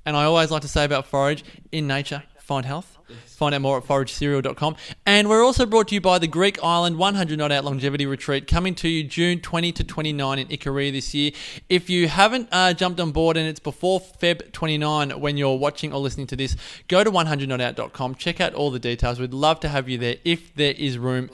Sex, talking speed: male, 225 wpm